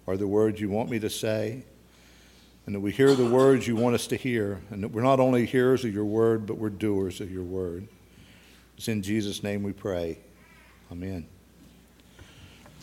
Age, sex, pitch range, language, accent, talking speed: 50-69, male, 100-130 Hz, English, American, 190 wpm